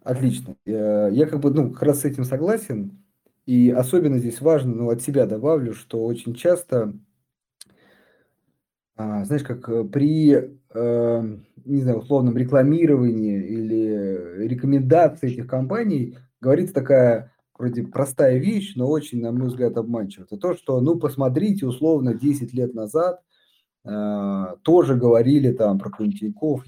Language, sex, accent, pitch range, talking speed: Russian, male, native, 115-140 Hz, 130 wpm